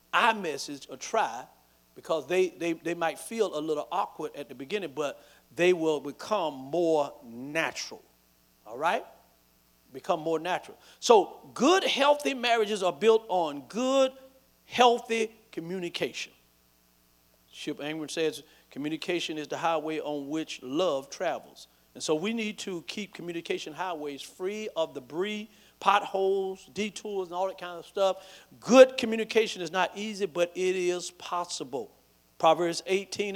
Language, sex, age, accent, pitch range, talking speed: English, male, 50-69, American, 155-200 Hz, 140 wpm